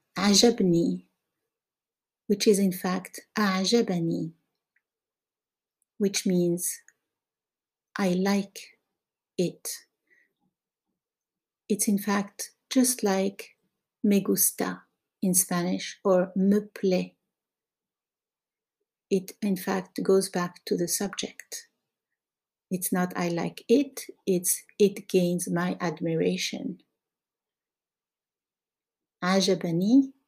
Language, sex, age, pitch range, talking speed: Arabic, female, 60-79, 175-215 Hz, 85 wpm